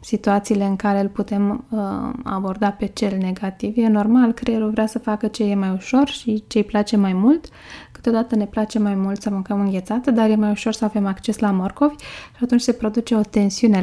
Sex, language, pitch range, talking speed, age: female, Romanian, 195-235 Hz, 215 wpm, 20-39